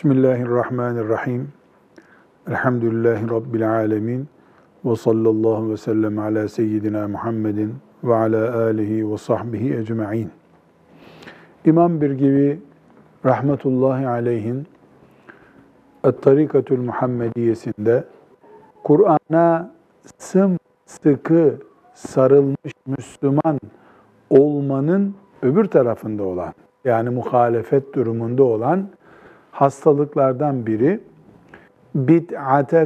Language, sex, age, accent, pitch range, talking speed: Turkish, male, 50-69, native, 115-150 Hz, 70 wpm